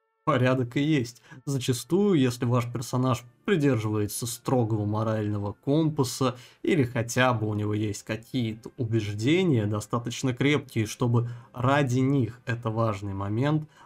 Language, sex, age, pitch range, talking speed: Russian, male, 20-39, 115-140 Hz, 115 wpm